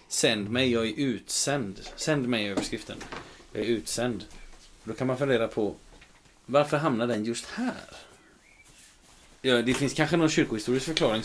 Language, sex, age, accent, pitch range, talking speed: Swedish, male, 30-49, native, 105-135 Hz, 145 wpm